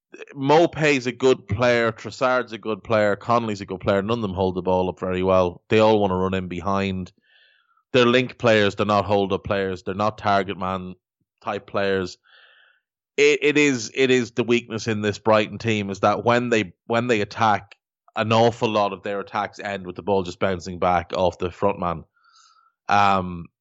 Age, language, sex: 20-39, English, male